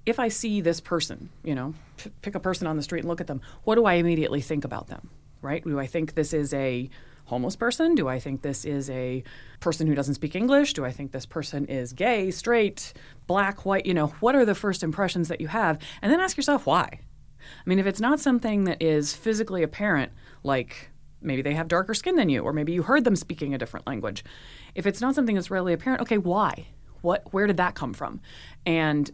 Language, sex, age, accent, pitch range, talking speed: English, female, 30-49, American, 145-190 Hz, 230 wpm